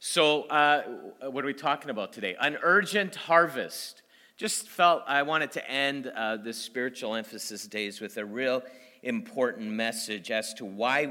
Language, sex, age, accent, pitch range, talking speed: English, male, 40-59, American, 110-175 Hz, 160 wpm